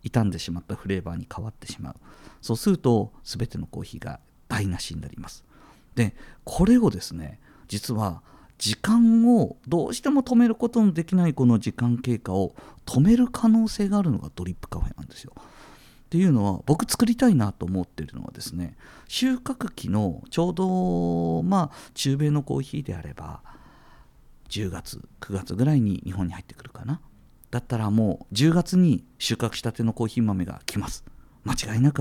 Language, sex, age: Japanese, male, 50-69